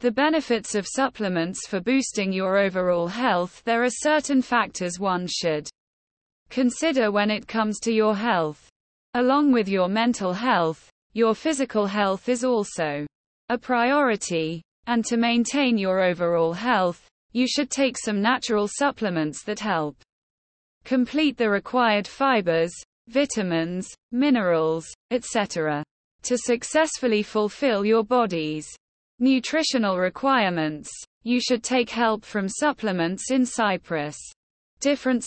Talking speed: 120 wpm